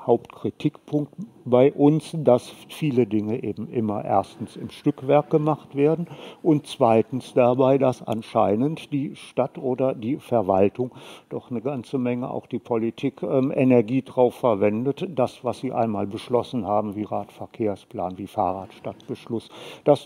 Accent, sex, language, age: German, male, German, 60-79